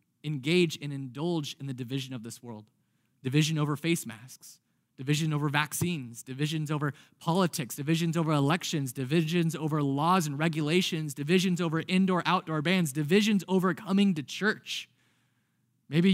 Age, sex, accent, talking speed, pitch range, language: 20-39, male, American, 140 wpm, 145-190 Hz, English